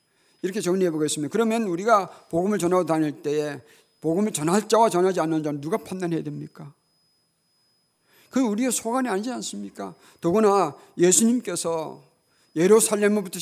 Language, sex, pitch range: Korean, male, 155-210 Hz